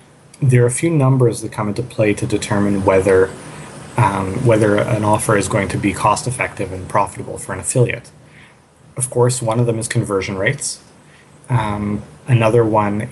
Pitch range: 105-125 Hz